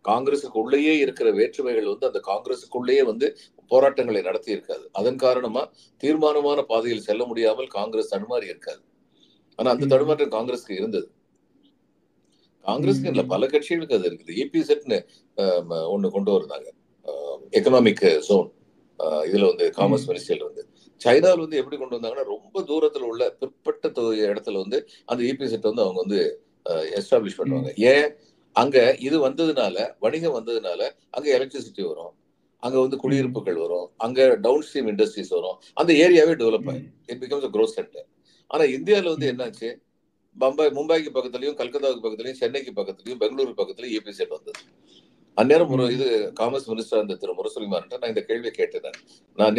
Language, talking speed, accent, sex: Tamil, 135 wpm, native, male